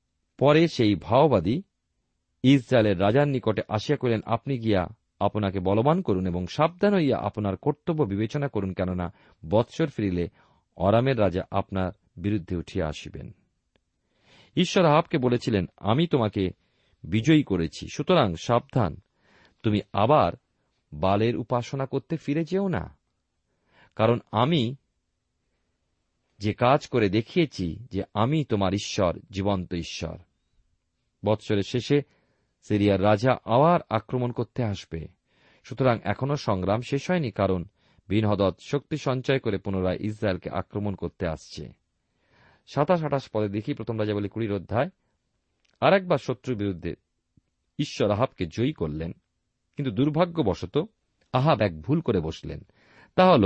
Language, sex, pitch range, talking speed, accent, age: Bengali, male, 95-140 Hz, 120 wpm, native, 40-59